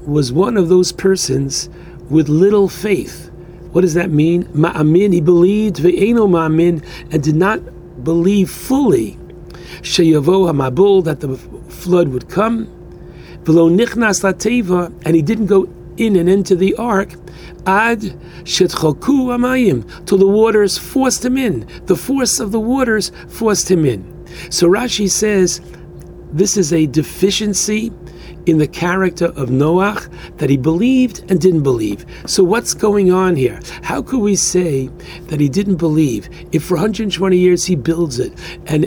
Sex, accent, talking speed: male, American, 145 wpm